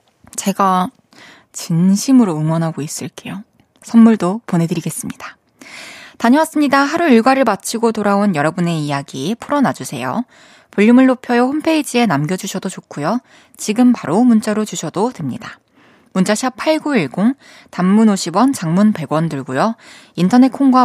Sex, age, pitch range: female, 20-39, 180-260 Hz